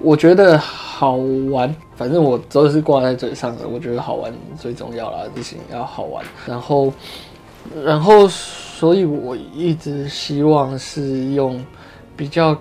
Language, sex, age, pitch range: Chinese, male, 20-39, 130-160 Hz